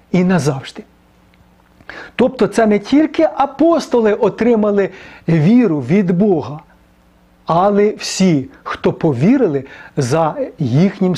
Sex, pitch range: male, 140-205 Hz